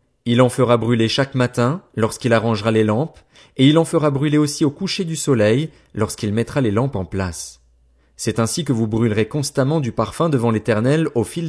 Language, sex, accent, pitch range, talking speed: French, male, French, 110-150 Hz, 200 wpm